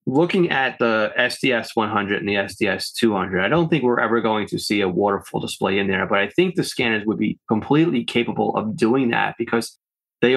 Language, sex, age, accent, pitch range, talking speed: English, male, 20-39, American, 100-125 Hz, 195 wpm